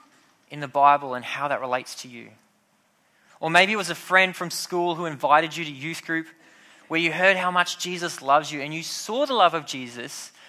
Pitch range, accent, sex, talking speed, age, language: 135-170 Hz, Australian, male, 215 wpm, 20-39, English